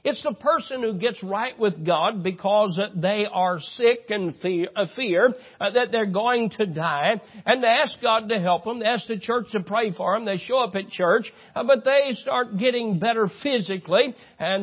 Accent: American